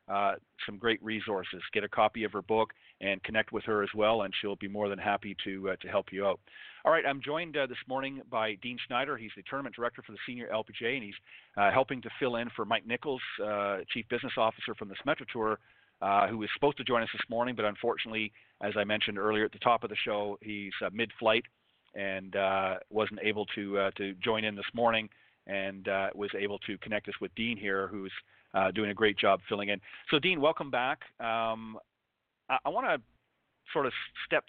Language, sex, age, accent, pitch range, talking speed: English, male, 40-59, American, 100-115 Hz, 225 wpm